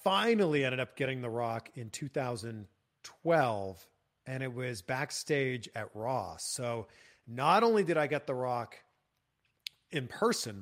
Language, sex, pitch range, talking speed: English, male, 110-145 Hz, 135 wpm